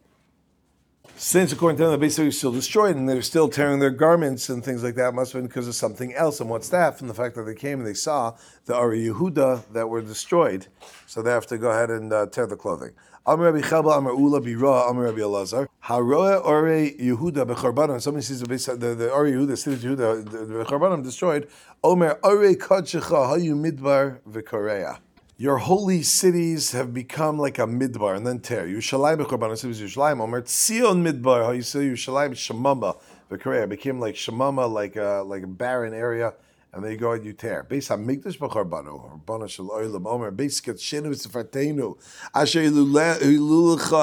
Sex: male